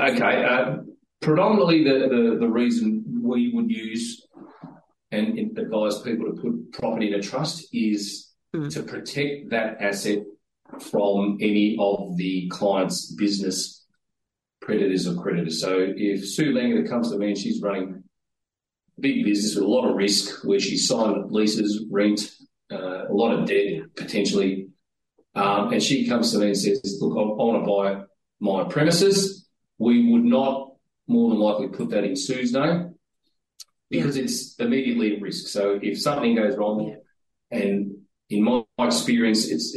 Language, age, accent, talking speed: English, 30-49, Australian, 155 wpm